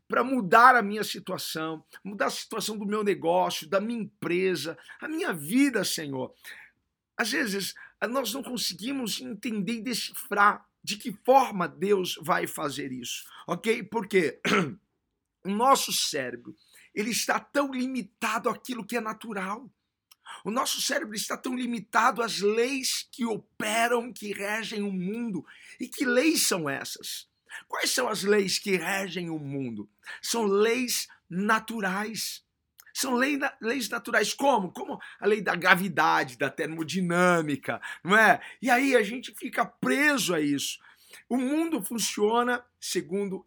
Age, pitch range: 50-69, 185-240 Hz